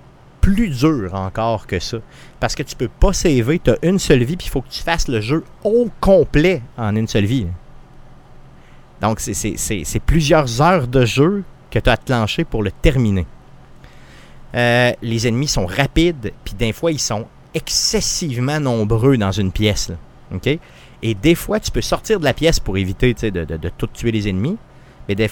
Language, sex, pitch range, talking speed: French, male, 105-145 Hz, 200 wpm